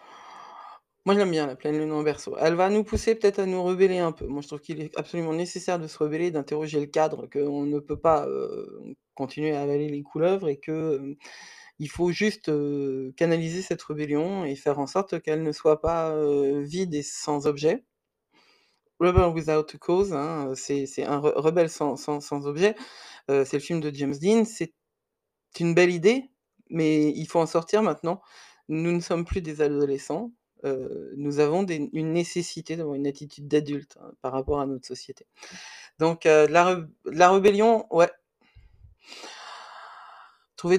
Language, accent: French, French